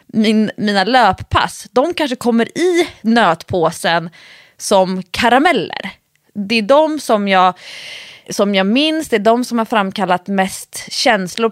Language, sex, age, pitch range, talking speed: English, female, 20-39, 185-240 Hz, 135 wpm